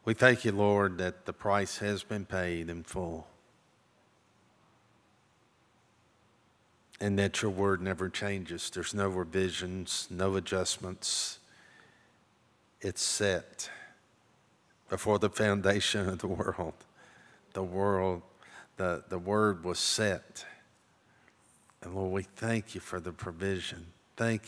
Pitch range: 90-105 Hz